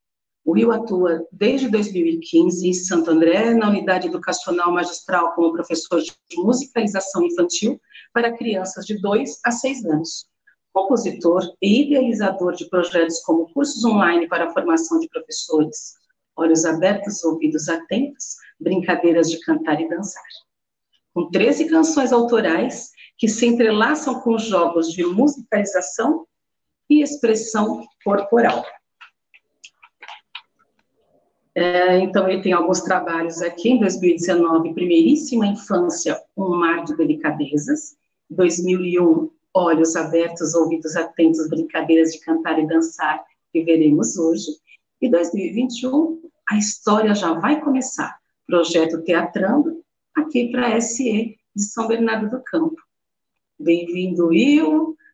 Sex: female